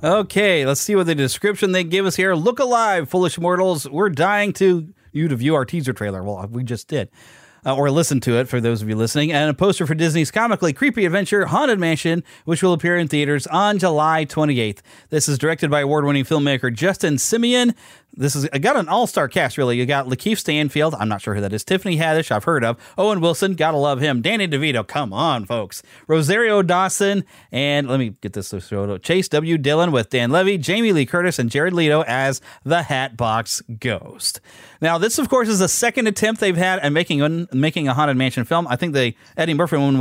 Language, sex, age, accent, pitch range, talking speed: English, male, 30-49, American, 130-185 Hz, 215 wpm